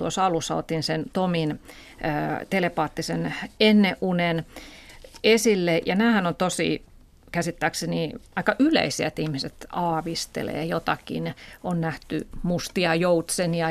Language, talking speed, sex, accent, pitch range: Finnish, 100 wpm, female, native, 160-195 Hz